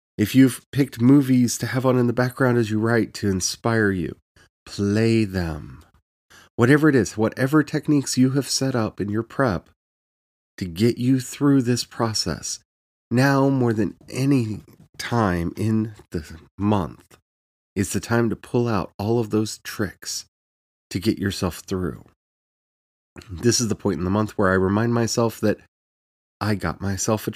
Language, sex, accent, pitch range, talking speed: English, male, American, 90-125 Hz, 160 wpm